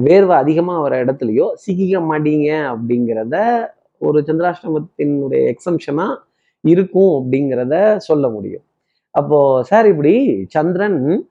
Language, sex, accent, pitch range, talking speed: Tamil, male, native, 125-170 Hz, 95 wpm